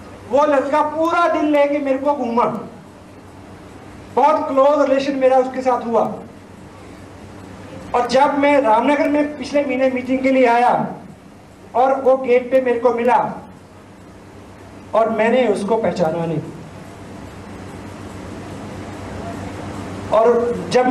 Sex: male